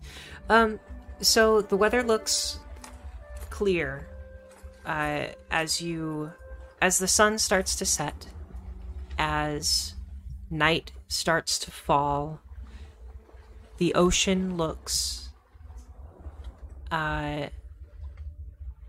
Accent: American